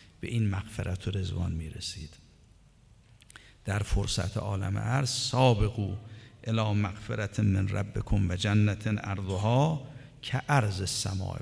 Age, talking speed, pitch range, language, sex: 50-69, 120 wpm, 100-120 Hz, Persian, male